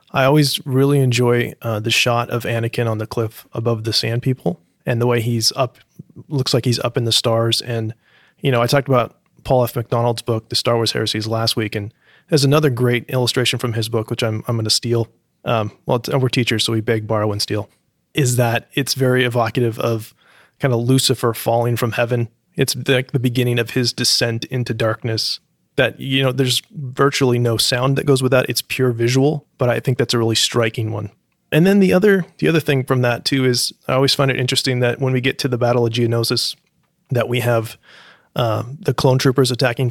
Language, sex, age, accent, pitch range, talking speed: English, male, 20-39, American, 115-135 Hz, 215 wpm